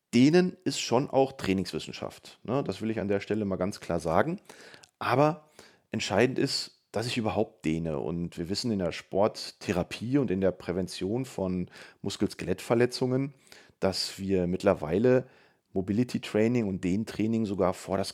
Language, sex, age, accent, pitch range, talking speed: German, male, 30-49, German, 95-120 Hz, 145 wpm